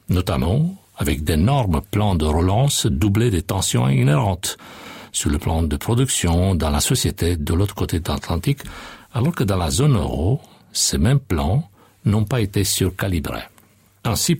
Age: 60-79